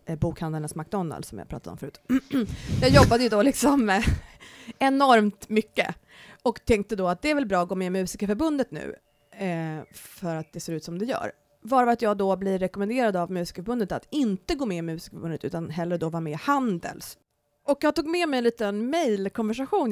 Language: Swedish